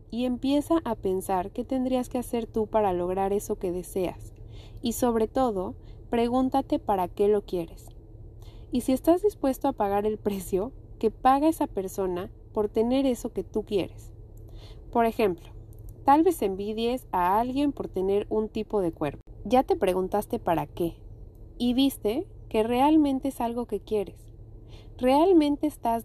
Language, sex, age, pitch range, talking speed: Spanish, female, 30-49, 180-250 Hz, 155 wpm